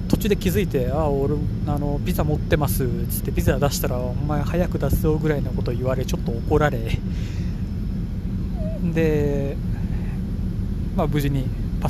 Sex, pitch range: male, 90-100 Hz